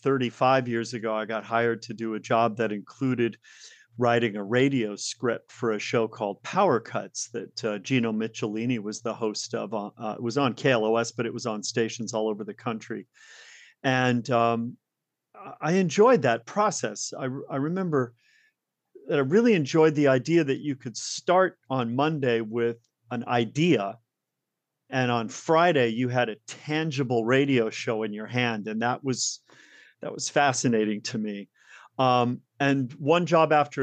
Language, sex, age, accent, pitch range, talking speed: English, male, 40-59, American, 110-135 Hz, 165 wpm